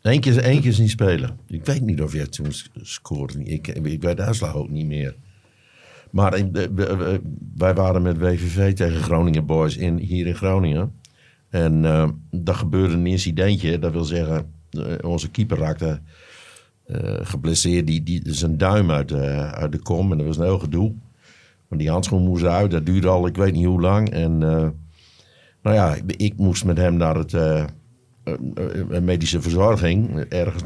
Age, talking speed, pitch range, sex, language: 60-79, 170 wpm, 80-100 Hz, male, Dutch